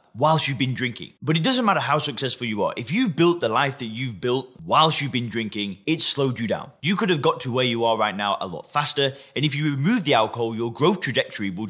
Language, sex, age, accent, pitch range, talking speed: English, male, 20-39, British, 115-160 Hz, 260 wpm